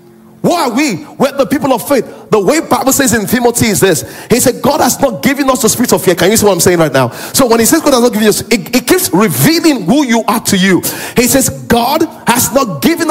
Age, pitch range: 40-59, 230-300 Hz